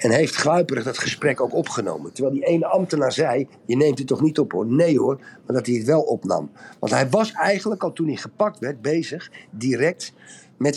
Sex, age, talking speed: male, 50-69, 215 wpm